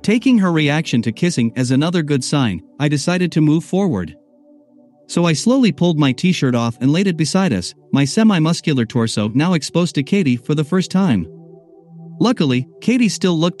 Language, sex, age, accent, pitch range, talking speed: English, male, 50-69, American, 135-185 Hz, 180 wpm